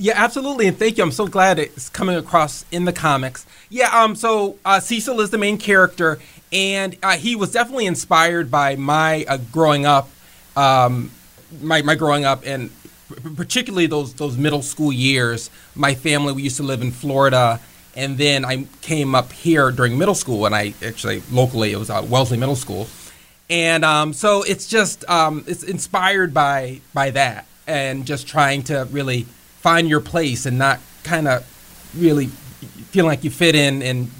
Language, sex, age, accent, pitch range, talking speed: English, male, 30-49, American, 130-170 Hz, 180 wpm